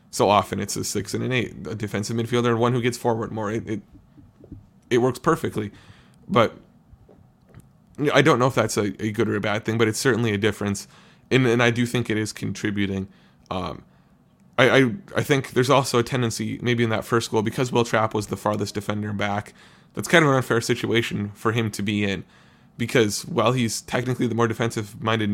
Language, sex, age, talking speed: English, male, 20-39, 210 wpm